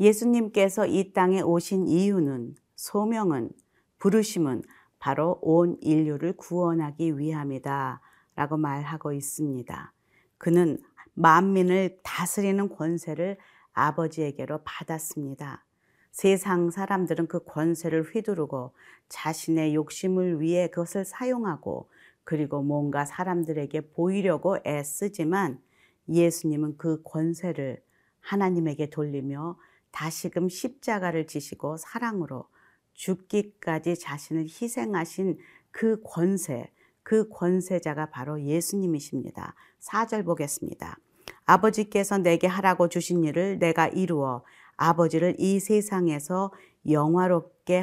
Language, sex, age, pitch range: Korean, female, 40-59, 155-195 Hz